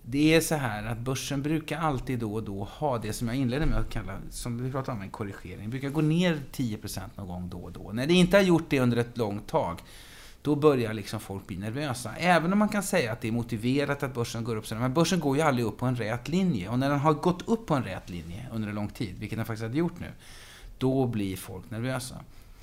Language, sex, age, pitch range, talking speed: Swedish, male, 30-49, 110-150 Hz, 255 wpm